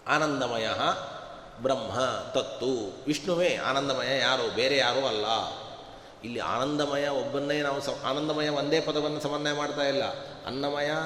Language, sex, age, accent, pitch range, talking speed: Kannada, male, 30-49, native, 145-185 Hz, 115 wpm